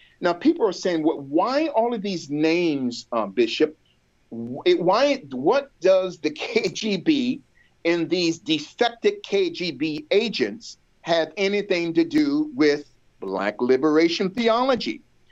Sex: male